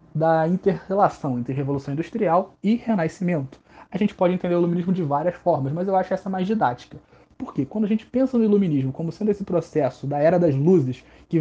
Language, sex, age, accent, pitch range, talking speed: Portuguese, male, 20-39, Brazilian, 150-195 Hz, 205 wpm